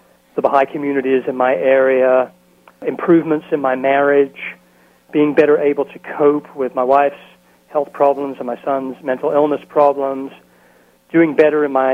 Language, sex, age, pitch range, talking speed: English, male, 40-59, 130-150 Hz, 150 wpm